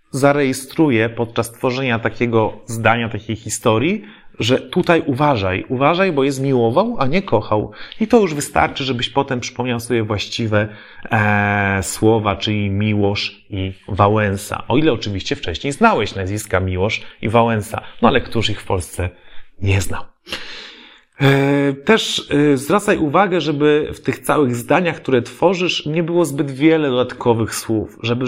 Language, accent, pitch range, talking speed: Polish, native, 110-145 Hz, 145 wpm